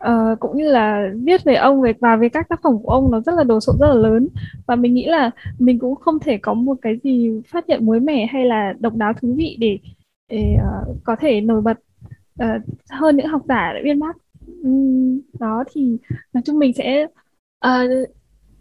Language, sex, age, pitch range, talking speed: Vietnamese, female, 10-29, 235-290 Hz, 220 wpm